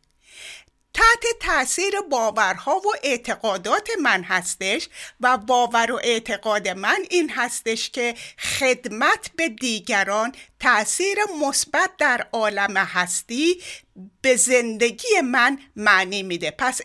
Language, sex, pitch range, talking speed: Persian, female, 210-315 Hz, 105 wpm